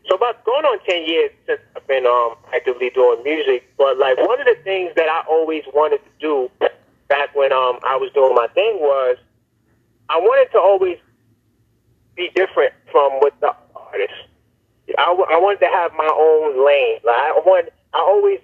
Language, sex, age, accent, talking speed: English, male, 30-49, American, 190 wpm